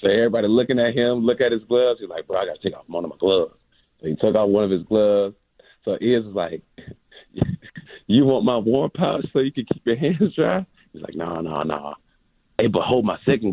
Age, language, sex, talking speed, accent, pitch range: 30-49, English, male, 250 wpm, American, 100-140 Hz